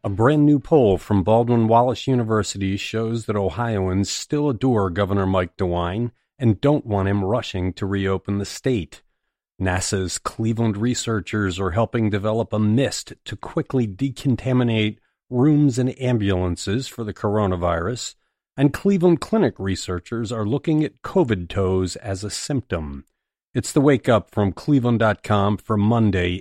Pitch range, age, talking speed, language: 100-135 Hz, 40-59, 140 wpm, English